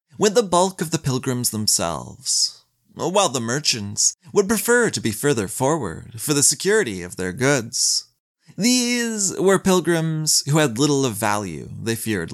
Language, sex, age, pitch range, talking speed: English, male, 30-49, 110-165 Hz, 155 wpm